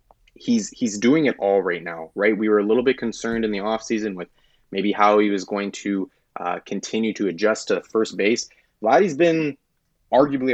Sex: male